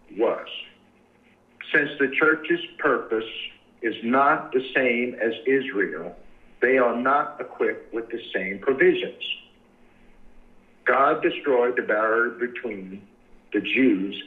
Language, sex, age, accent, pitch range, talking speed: English, male, 60-79, American, 110-165 Hz, 110 wpm